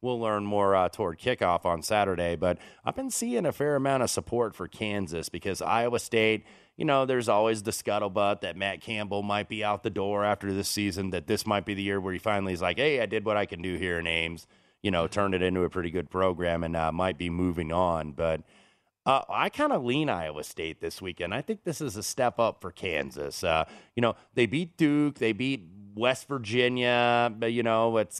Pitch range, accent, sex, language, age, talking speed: 95-120 Hz, American, male, English, 30-49, 230 wpm